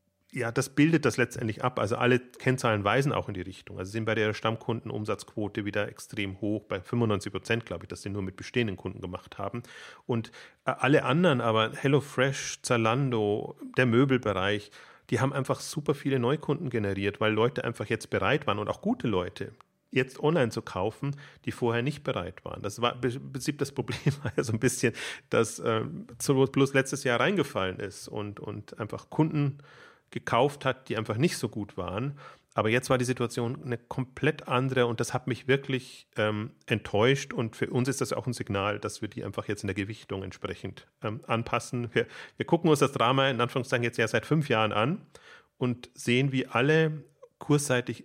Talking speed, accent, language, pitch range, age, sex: 190 wpm, German, German, 110-135 Hz, 30-49, male